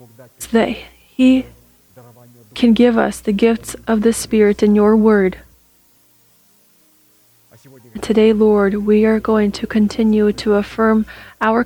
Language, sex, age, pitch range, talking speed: English, female, 30-49, 130-220 Hz, 120 wpm